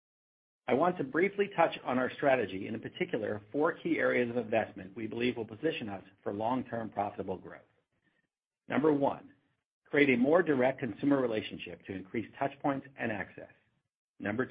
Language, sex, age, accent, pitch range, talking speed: English, male, 50-69, American, 110-145 Hz, 160 wpm